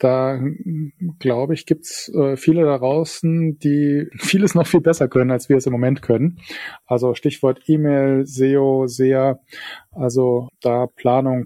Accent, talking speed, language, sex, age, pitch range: German, 145 wpm, German, male, 20-39, 125-140 Hz